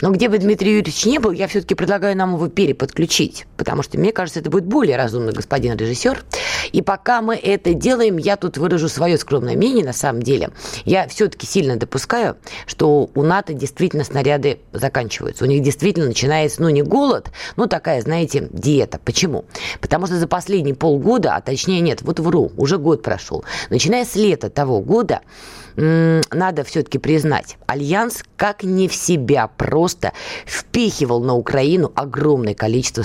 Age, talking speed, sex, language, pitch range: 20-39, 165 wpm, female, Russian, 140-190 Hz